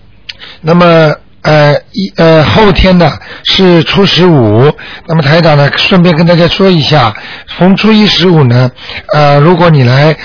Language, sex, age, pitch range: Chinese, male, 60-79, 135-175 Hz